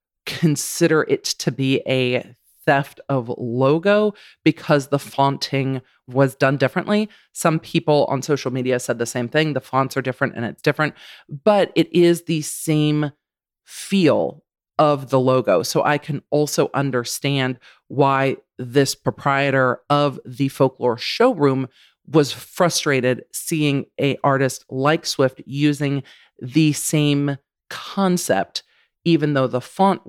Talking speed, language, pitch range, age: 130 wpm, English, 130-155 Hz, 40-59